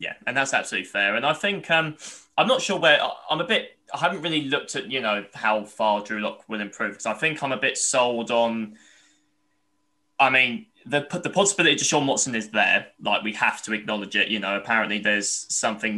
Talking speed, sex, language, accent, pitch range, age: 220 wpm, male, English, British, 105-135 Hz, 10-29